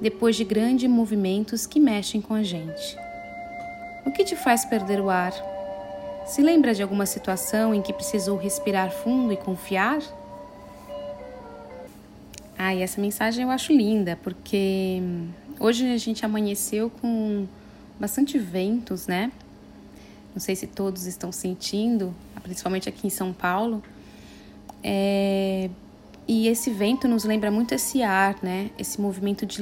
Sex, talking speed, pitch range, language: female, 135 wpm, 190-225 Hz, Portuguese